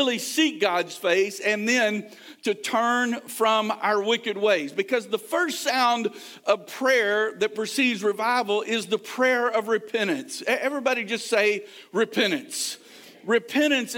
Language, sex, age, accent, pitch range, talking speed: English, male, 50-69, American, 210-260 Hz, 130 wpm